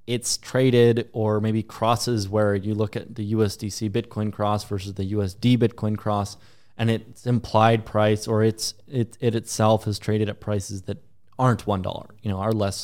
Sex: male